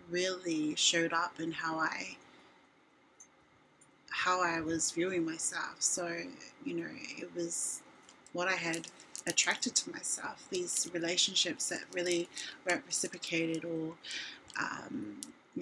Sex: female